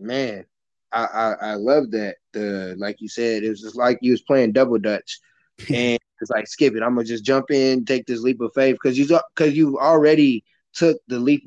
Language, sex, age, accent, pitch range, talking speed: English, male, 20-39, American, 120-155 Hz, 220 wpm